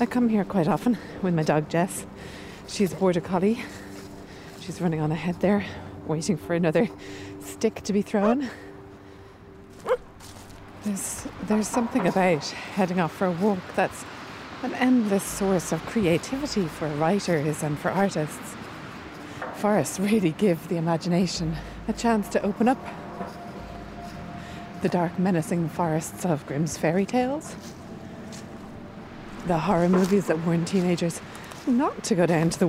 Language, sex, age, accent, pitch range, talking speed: English, female, 30-49, Irish, 155-210 Hz, 140 wpm